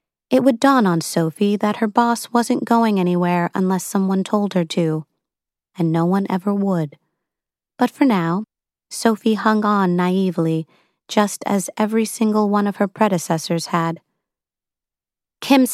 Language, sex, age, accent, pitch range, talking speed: English, female, 30-49, American, 170-210 Hz, 145 wpm